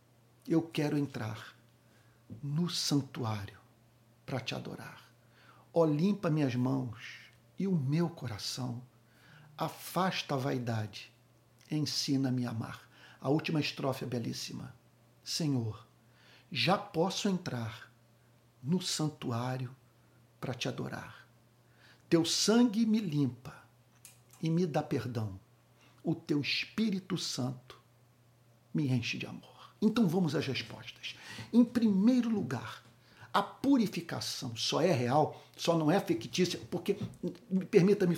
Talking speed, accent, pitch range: 115 wpm, Brazilian, 120-175 Hz